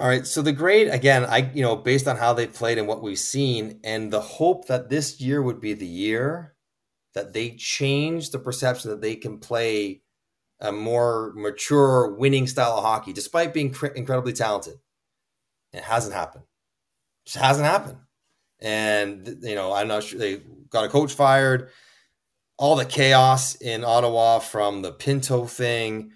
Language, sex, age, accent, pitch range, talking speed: English, male, 30-49, American, 110-135 Hz, 170 wpm